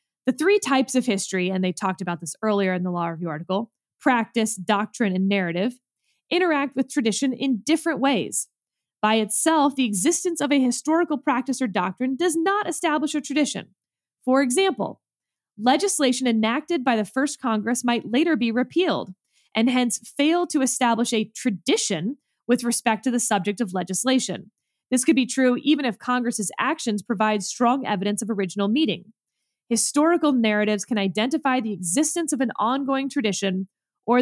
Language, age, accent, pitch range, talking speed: English, 20-39, American, 200-275 Hz, 160 wpm